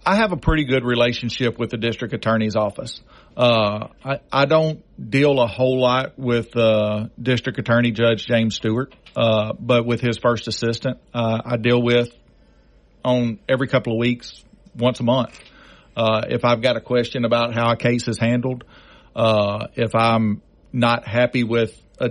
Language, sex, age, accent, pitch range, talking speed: English, male, 50-69, American, 115-125 Hz, 170 wpm